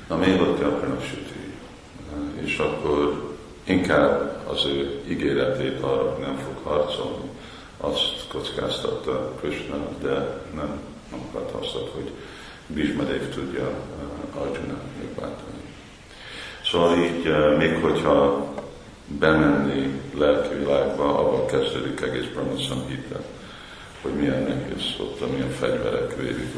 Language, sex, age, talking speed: Hungarian, male, 50-69, 105 wpm